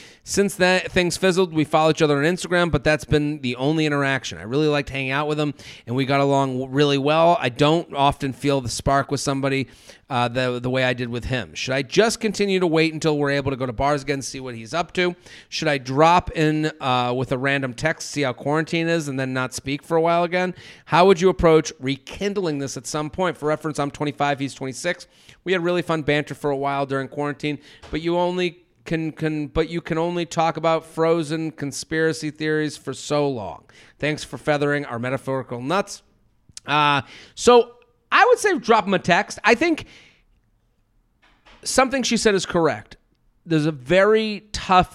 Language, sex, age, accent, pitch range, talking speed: English, male, 30-49, American, 135-175 Hz, 205 wpm